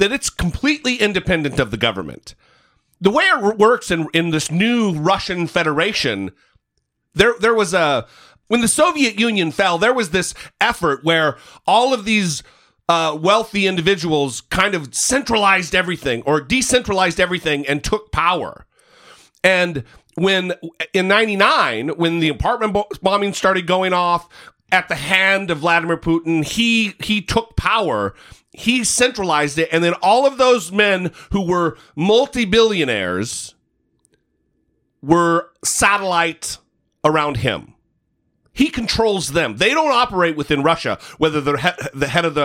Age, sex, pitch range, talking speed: 40-59, male, 155-215 Hz, 140 wpm